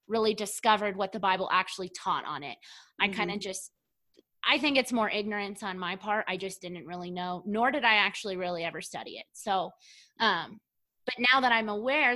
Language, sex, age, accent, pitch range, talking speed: English, female, 20-39, American, 185-230 Hz, 200 wpm